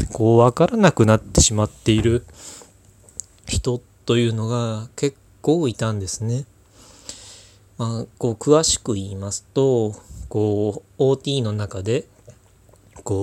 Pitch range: 100-115 Hz